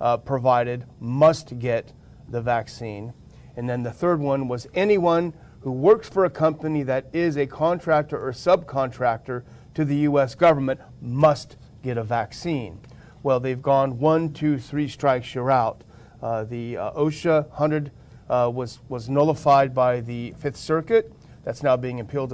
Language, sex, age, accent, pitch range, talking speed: English, male, 40-59, American, 125-155 Hz, 155 wpm